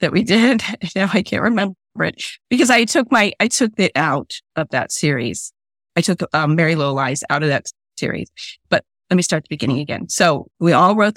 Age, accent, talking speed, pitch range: 40-59, American, 215 wpm, 150-190 Hz